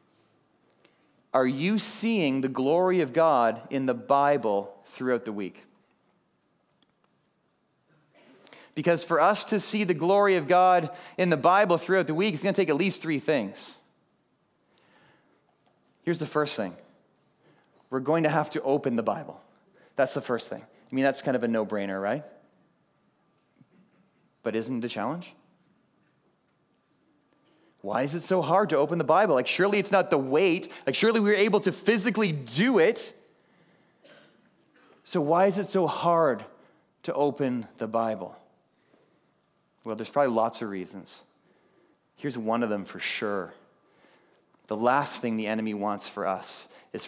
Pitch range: 115-180 Hz